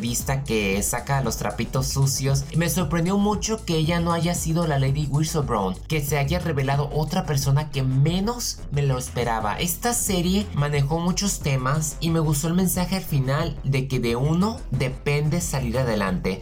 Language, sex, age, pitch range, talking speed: Spanish, male, 20-39, 125-165 Hz, 175 wpm